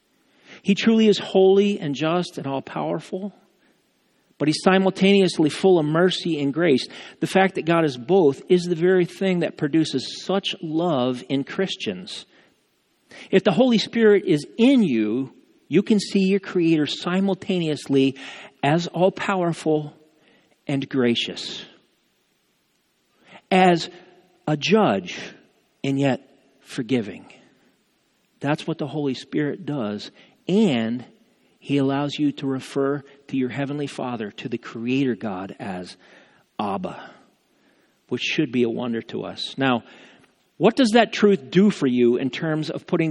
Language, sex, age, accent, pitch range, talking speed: English, male, 50-69, American, 130-185 Hz, 135 wpm